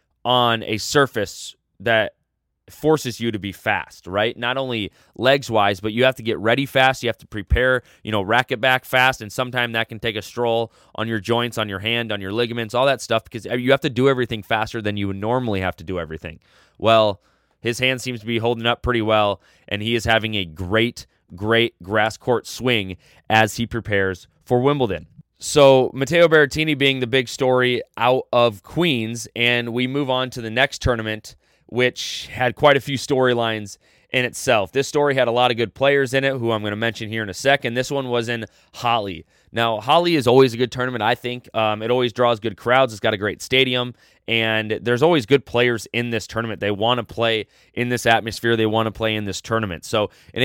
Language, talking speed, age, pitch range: English, 215 wpm, 20-39, 110-125 Hz